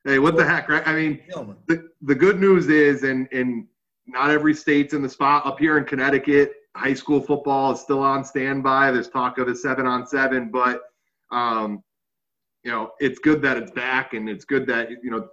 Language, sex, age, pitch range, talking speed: English, male, 30-49, 125-160 Hz, 205 wpm